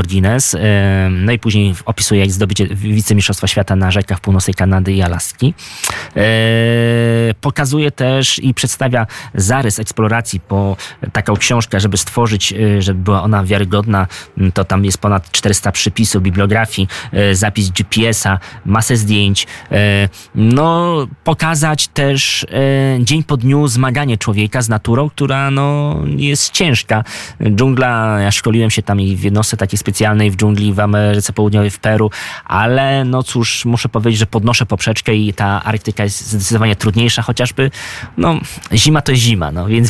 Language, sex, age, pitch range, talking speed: Polish, male, 20-39, 100-125 Hz, 145 wpm